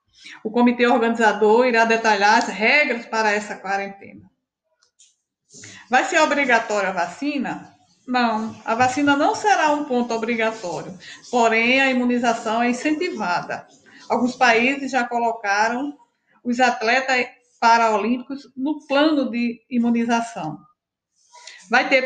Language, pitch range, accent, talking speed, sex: Portuguese, 225-275 Hz, Brazilian, 110 wpm, female